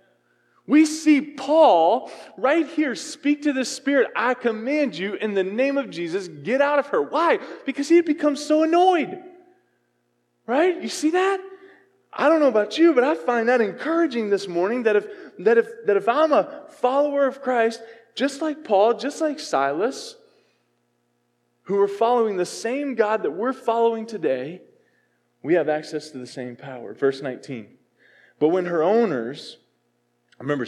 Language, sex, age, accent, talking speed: English, male, 20-39, American, 165 wpm